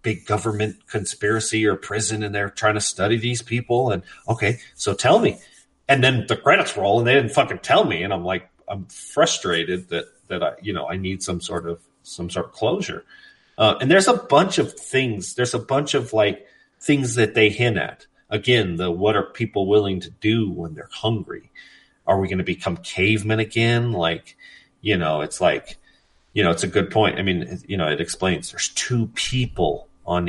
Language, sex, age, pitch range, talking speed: English, male, 40-59, 90-115 Hz, 205 wpm